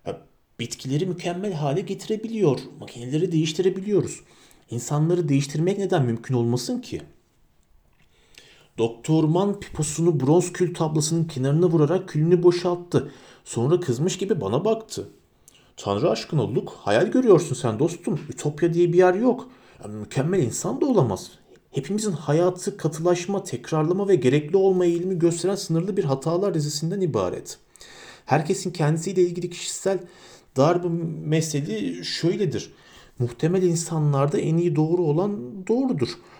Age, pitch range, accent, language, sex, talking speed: 40-59, 140-180 Hz, native, Turkish, male, 115 wpm